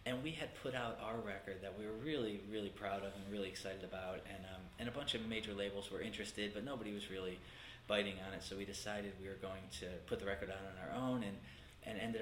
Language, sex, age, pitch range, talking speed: English, male, 20-39, 90-105 Hz, 255 wpm